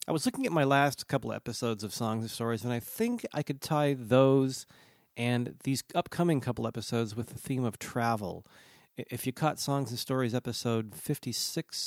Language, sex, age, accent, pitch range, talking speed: English, male, 40-59, American, 110-140 Hz, 185 wpm